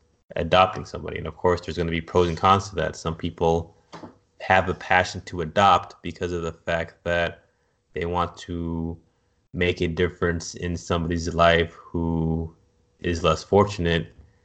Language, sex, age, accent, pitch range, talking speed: English, male, 20-39, American, 80-90 Hz, 160 wpm